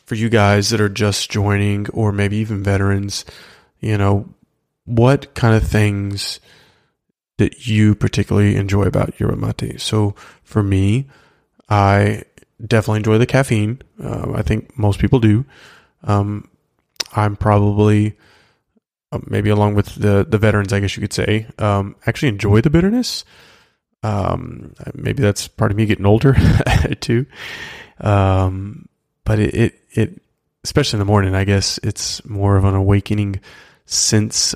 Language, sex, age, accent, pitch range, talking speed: English, male, 20-39, American, 100-115 Hz, 145 wpm